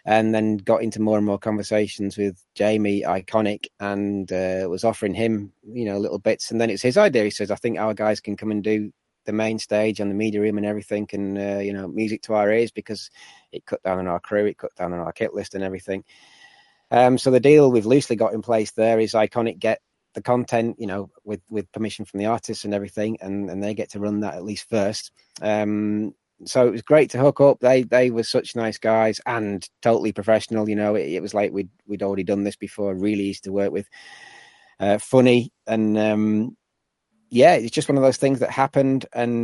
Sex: male